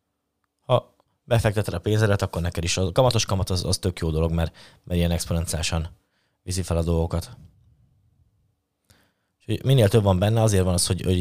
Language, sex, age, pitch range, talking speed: Hungarian, male, 20-39, 90-105 Hz, 170 wpm